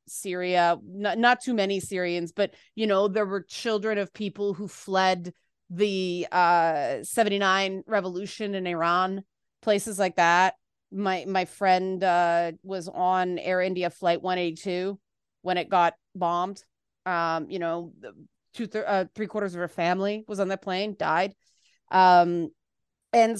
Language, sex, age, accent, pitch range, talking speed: English, female, 30-49, American, 180-220 Hz, 145 wpm